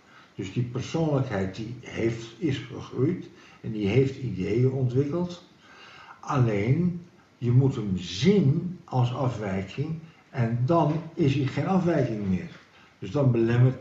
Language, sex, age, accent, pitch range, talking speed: Dutch, male, 60-79, Dutch, 110-150 Hz, 125 wpm